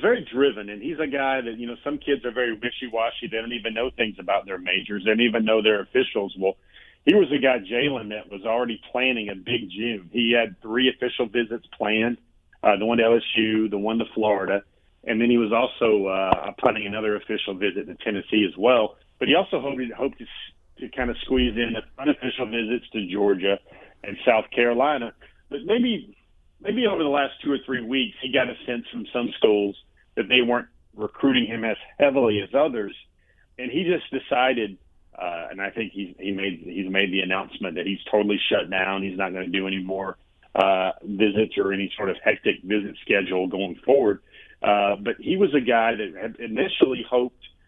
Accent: American